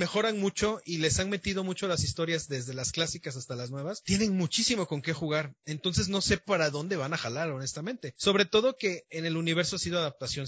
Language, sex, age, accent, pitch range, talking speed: Spanish, male, 30-49, Mexican, 135-175 Hz, 220 wpm